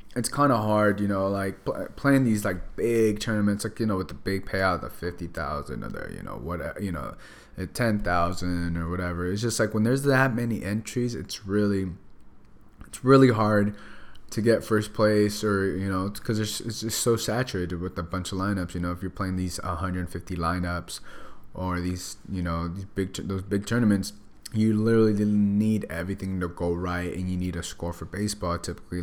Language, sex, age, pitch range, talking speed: English, male, 20-39, 85-105 Hz, 200 wpm